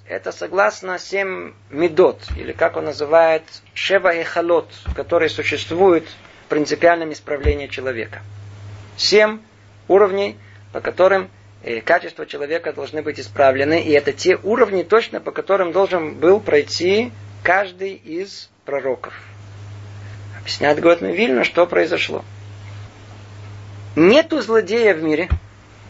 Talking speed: 110 wpm